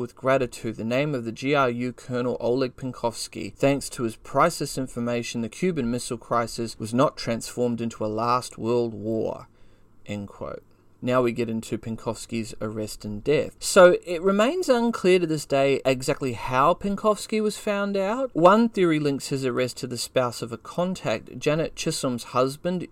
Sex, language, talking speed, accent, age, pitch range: male, English, 160 wpm, Australian, 30-49, 115-145 Hz